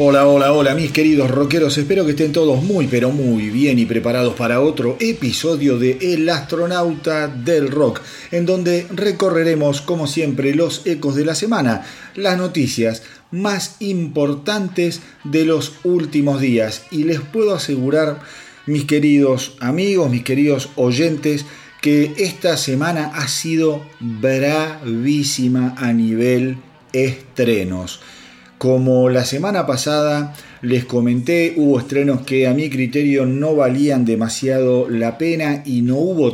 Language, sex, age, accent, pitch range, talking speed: Spanish, male, 40-59, Argentinian, 125-155 Hz, 135 wpm